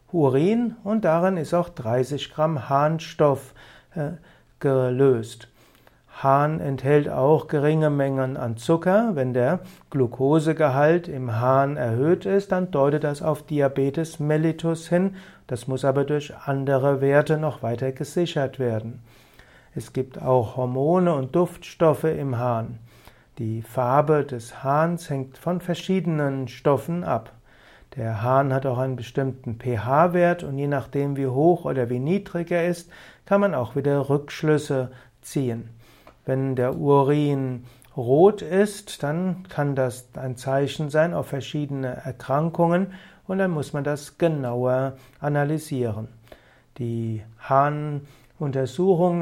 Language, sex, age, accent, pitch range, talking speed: German, male, 60-79, German, 130-160 Hz, 125 wpm